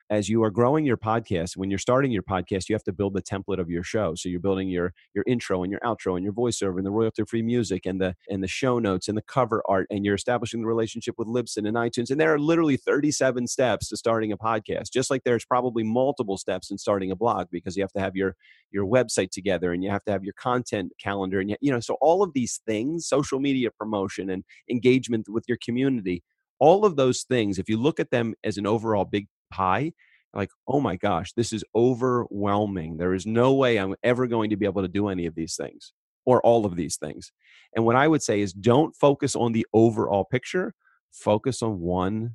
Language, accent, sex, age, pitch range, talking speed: English, American, male, 30-49, 95-120 Hz, 235 wpm